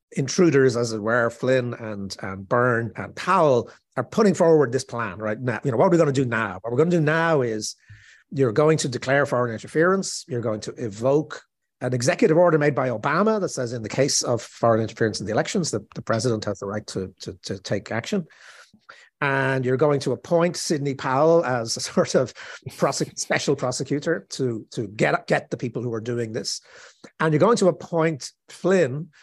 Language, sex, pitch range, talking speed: English, male, 115-160 Hz, 205 wpm